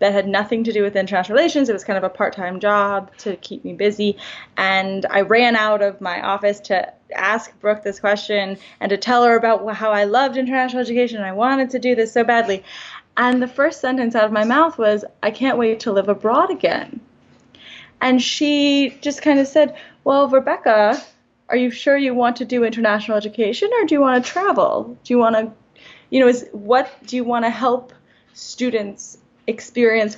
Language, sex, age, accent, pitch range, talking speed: English, female, 10-29, American, 205-250 Hz, 205 wpm